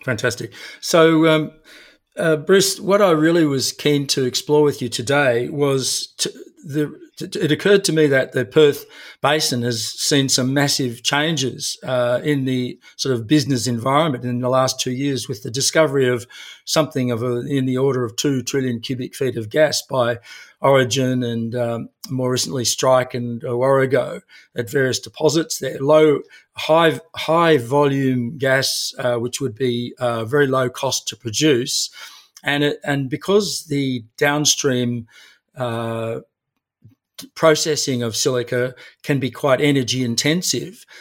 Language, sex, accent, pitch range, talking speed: English, male, Australian, 125-150 Hz, 150 wpm